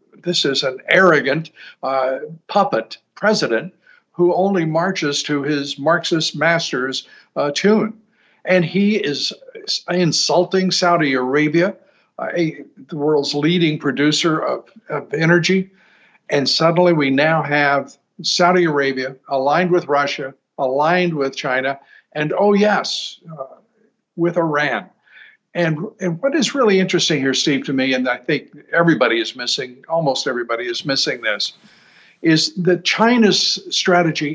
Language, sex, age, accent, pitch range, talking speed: English, male, 60-79, American, 140-175 Hz, 130 wpm